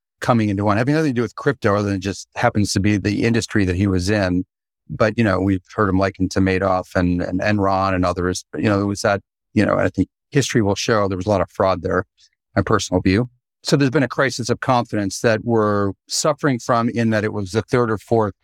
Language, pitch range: English, 95-120 Hz